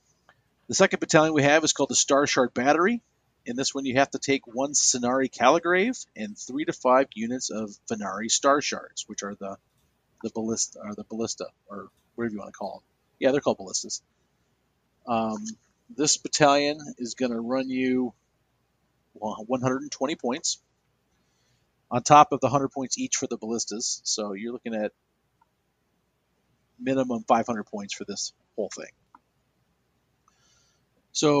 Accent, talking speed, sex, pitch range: American, 155 wpm, male, 115-150 Hz